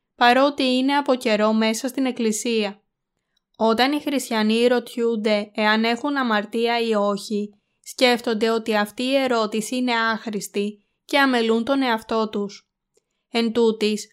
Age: 20-39